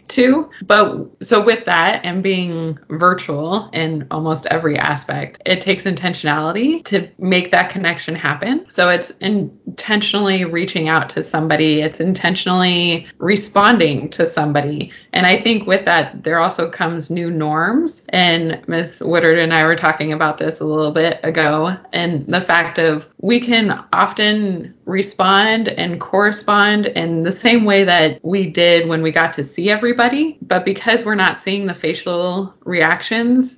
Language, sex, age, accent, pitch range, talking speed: English, female, 20-39, American, 160-195 Hz, 155 wpm